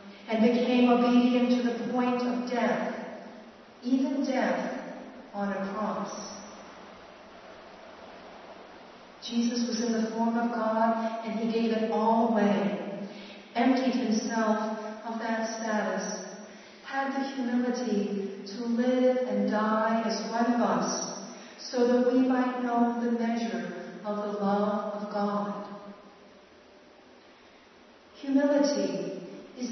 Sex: female